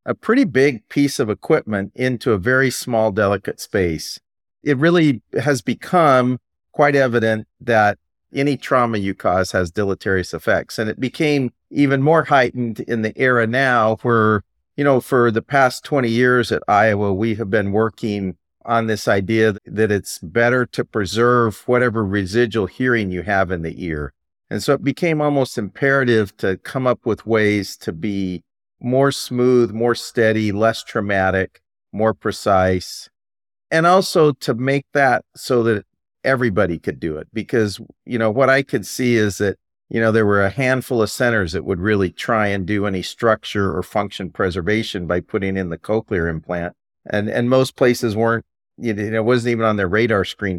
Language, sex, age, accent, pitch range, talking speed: English, male, 40-59, American, 95-125 Hz, 175 wpm